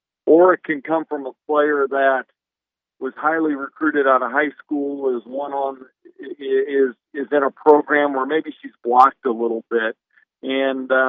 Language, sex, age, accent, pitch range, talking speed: English, male, 50-69, American, 125-145 Hz, 170 wpm